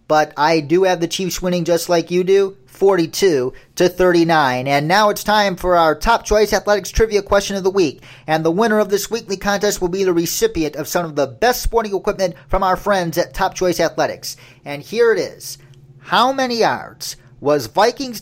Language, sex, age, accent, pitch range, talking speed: English, male, 40-59, American, 155-205 Hz, 205 wpm